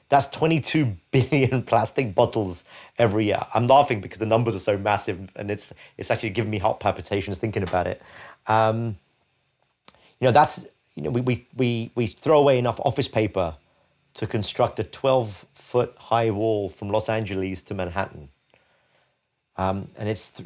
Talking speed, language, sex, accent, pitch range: 165 wpm, English, male, British, 95-120 Hz